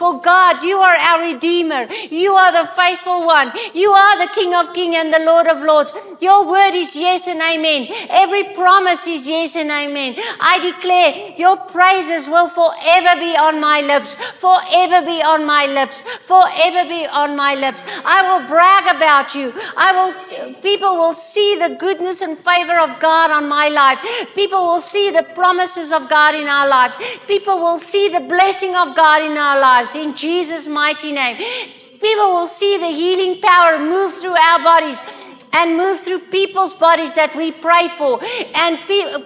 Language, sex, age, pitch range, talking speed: English, female, 50-69, 320-365 Hz, 180 wpm